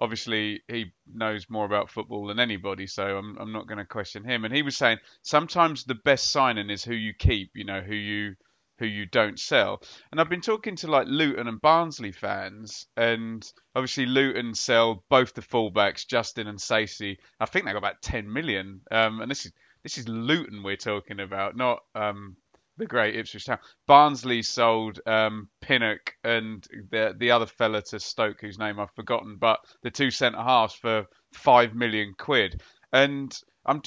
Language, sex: English, male